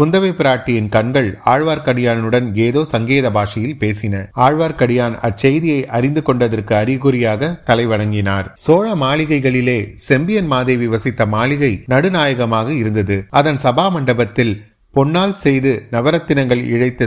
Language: Tamil